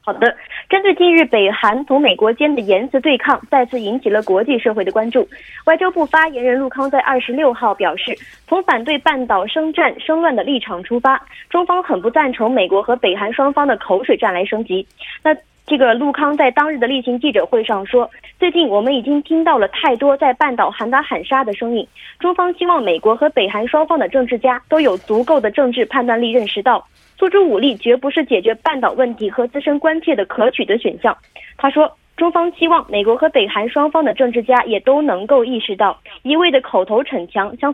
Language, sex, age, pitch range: Korean, female, 20-39, 225-310 Hz